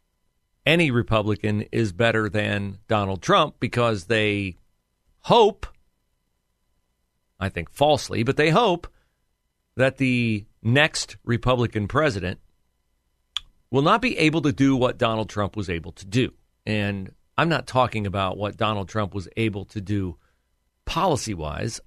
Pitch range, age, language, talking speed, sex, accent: 75-120 Hz, 40-59, English, 130 wpm, male, American